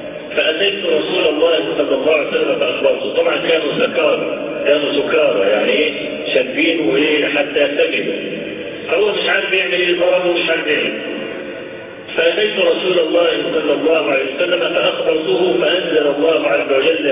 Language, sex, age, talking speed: Arabic, male, 50-69, 125 wpm